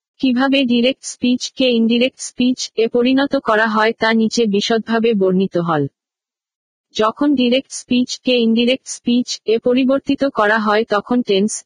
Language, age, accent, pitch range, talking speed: Bengali, 50-69, native, 215-250 Hz, 140 wpm